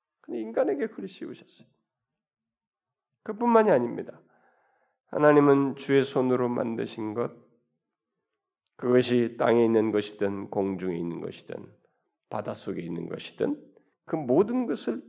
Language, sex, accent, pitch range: Korean, male, native, 130-215 Hz